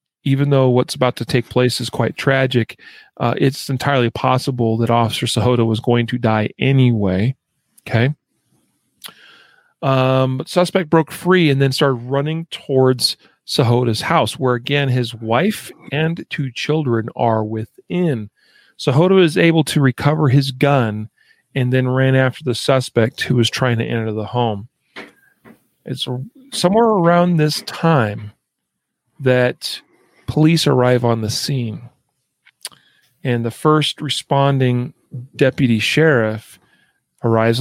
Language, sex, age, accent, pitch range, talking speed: English, male, 40-59, American, 120-145 Hz, 130 wpm